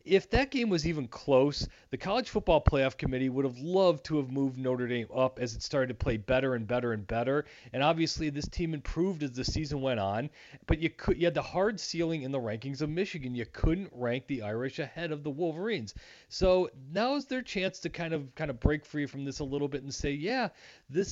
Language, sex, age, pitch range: English, male, 40-59, 125-165 Hz